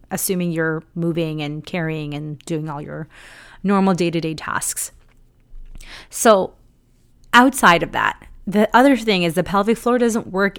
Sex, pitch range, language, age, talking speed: female, 170-230 Hz, English, 30-49, 140 wpm